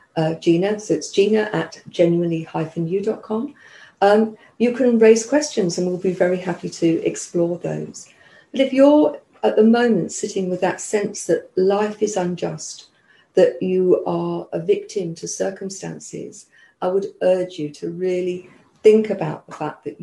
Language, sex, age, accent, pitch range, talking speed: English, female, 50-69, British, 165-205 Hz, 155 wpm